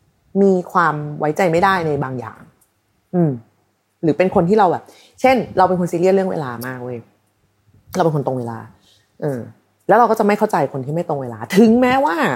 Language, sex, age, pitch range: Thai, female, 30-49, 145-215 Hz